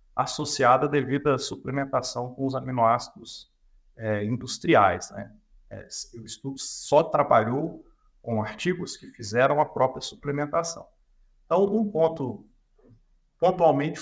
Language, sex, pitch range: Portuguese, male, 120-150 Hz